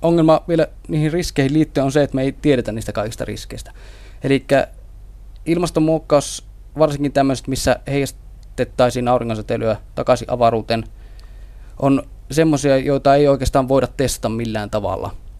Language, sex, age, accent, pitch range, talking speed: Finnish, male, 20-39, native, 105-140 Hz, 125 wpm